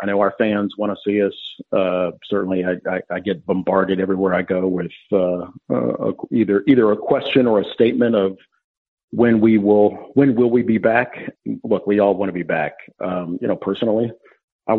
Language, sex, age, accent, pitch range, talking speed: English, male, 50-69, American, 100-120 Hz, 205 wpm